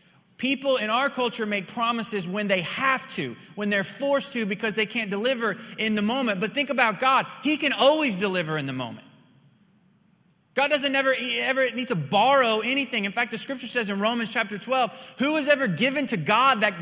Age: 30-49